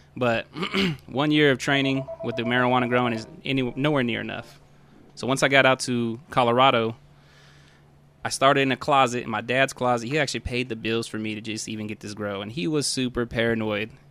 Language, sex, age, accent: English, male, 20-39, American